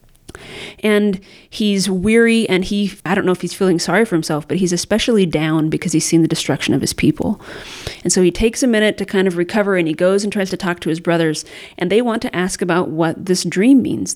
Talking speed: 235 wpm